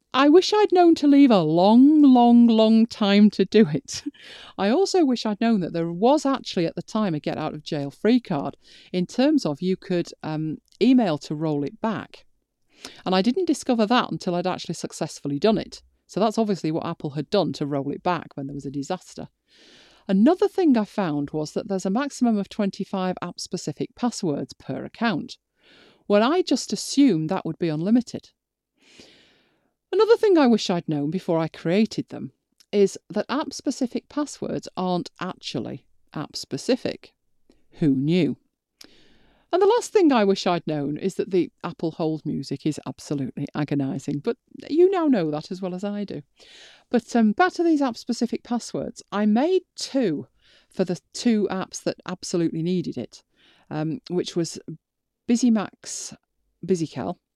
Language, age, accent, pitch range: English, 40-59, British, 160-245 Hz